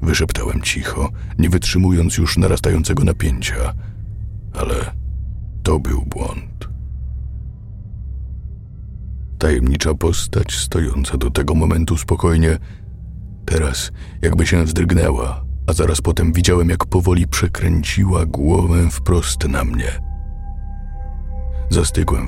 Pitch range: 75-90 Hz